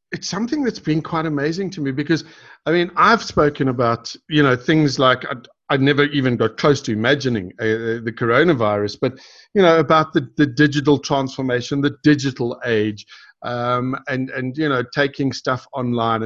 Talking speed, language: 175 wpm, English